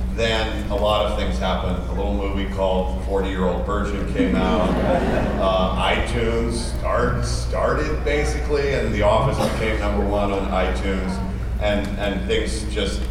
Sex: male